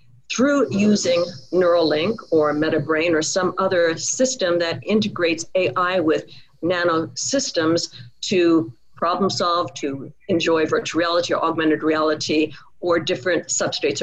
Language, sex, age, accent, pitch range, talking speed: English, female, 50-69, American, 165-225 Hz, 120 wpm